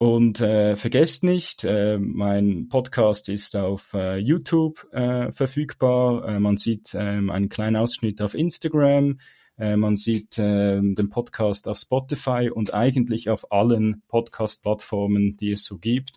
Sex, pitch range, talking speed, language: male, 110-135 Hz, 145 wpm, German